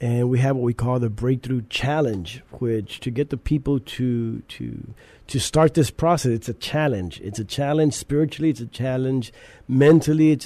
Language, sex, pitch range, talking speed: English, male, 115-145 Hz, 185 wpm